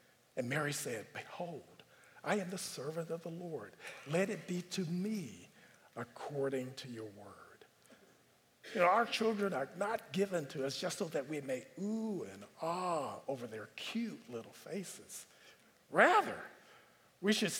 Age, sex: 50-69, male